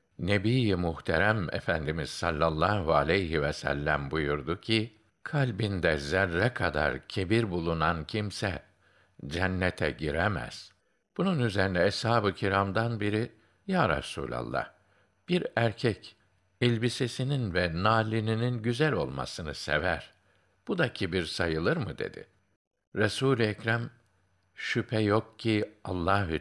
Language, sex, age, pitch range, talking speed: Turkish, male, 60-79, 85-120 Hz, 100 wpm